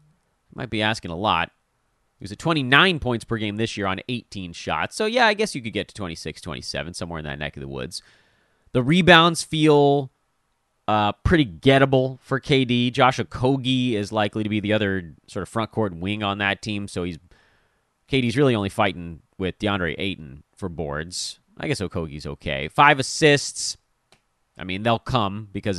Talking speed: 185 wpm